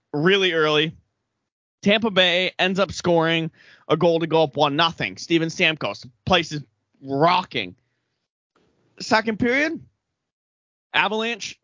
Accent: American